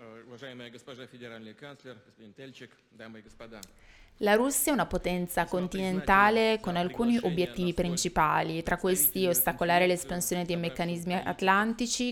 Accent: native